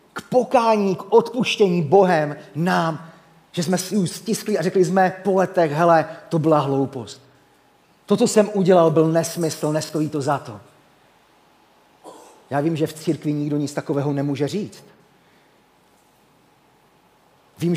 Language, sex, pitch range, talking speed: Czech, male, 140-225 Hz, 135 wpm